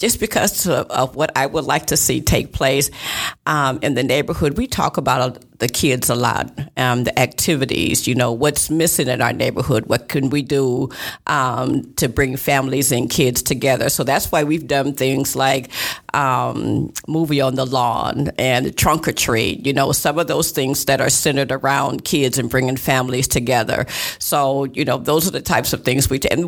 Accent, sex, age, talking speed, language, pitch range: American, female, 50-69, 195 wpm, English, 135-155 Hz